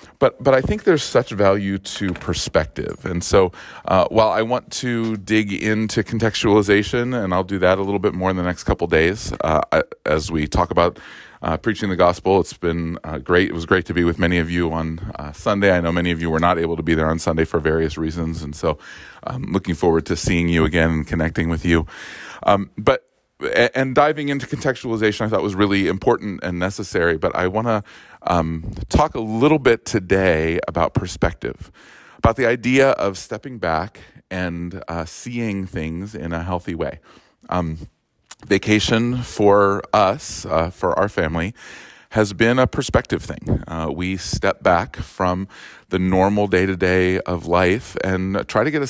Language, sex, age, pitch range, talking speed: English, male, 30-49, 85-110 Hz, 185 wpm